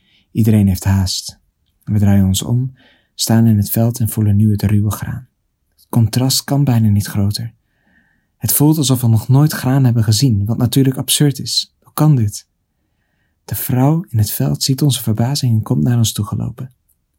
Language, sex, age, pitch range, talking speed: Dutch, male, 40-59, 105-125 Hz, 180 wpm